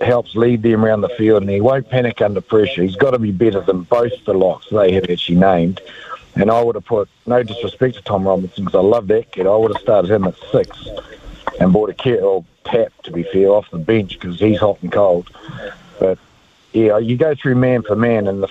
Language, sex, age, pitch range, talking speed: English, male, 60-79, 105-130 Hz, 240 wpm